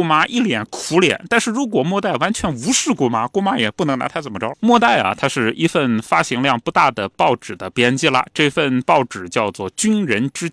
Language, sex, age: Chinese, male, 20-39